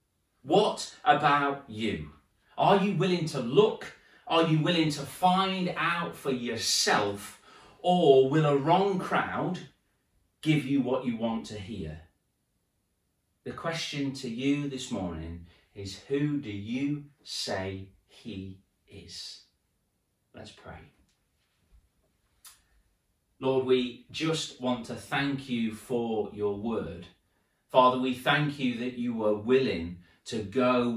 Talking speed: 120 wpm